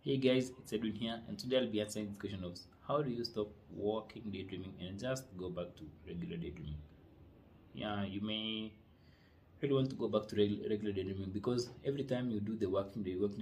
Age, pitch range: 30-49, 85-105 Hz